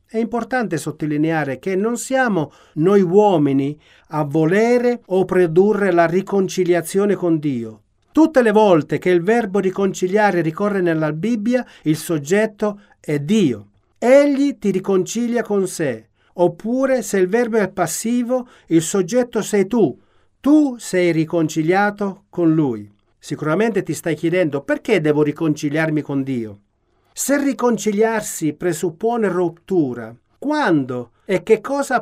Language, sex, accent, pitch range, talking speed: Italian, male, native, 155-215 Hz, 125 wpm